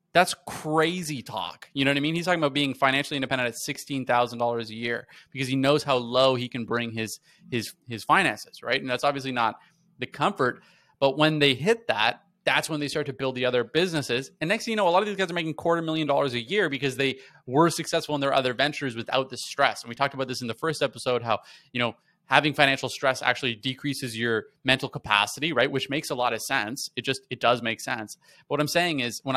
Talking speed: 240 wpm